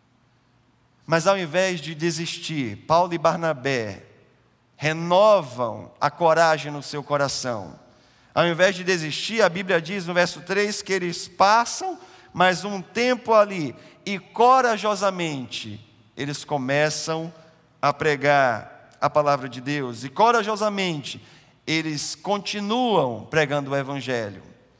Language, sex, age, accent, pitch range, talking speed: Portuguese, male, 50-69, Brazilian, 130-195 Hz, 115 wpm